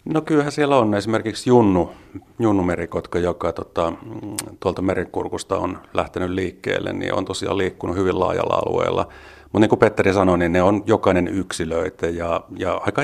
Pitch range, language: 85-100 Hz, Finnish